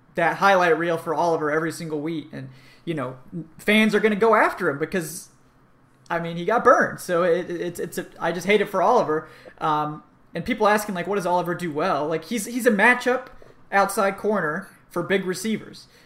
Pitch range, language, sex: 160-220 Hz, English, male